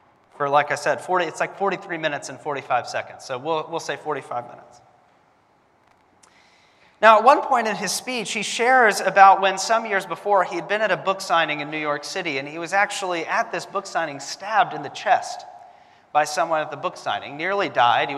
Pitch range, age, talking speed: 155-205 Hz, 30-49, 210 wpm